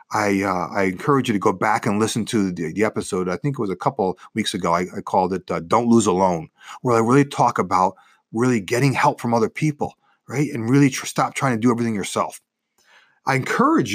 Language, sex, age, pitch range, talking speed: English, male, 40-59, 100-155 Hz, 230 wpm